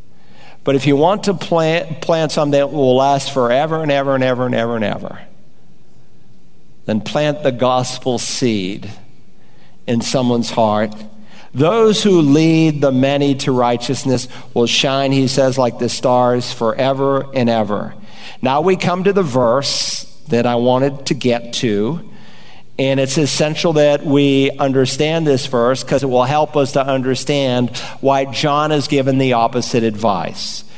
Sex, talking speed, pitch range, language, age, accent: male, 155 wpm, 125-155 Hz, English, 50-69, American